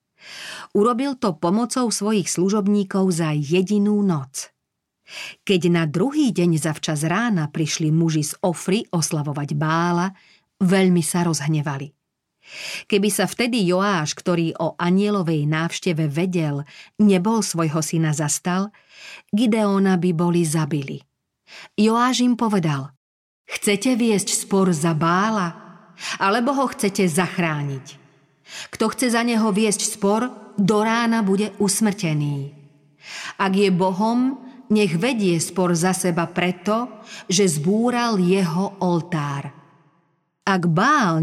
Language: Slovak